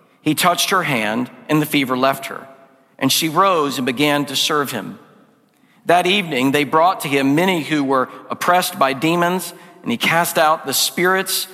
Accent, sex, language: American, male, English